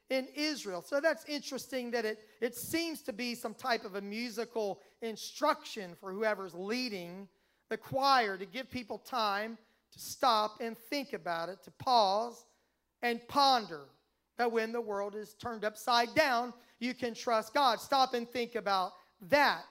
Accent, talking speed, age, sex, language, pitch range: American, 160 wpm, 40-59, male, English, 215-270 Hz